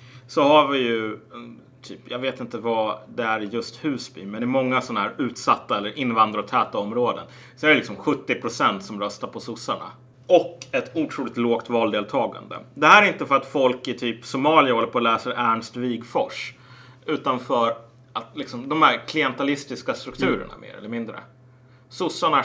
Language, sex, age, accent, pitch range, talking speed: Swedish, male, 30-49, Norwegian, 115-135 Hz, 170 wpm